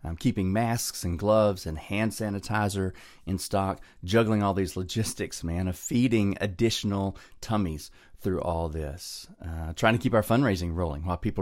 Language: English